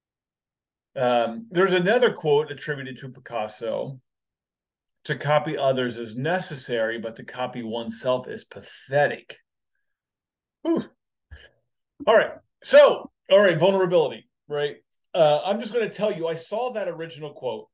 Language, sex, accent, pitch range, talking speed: English, male, American, 130-200 Hz, 125 wpm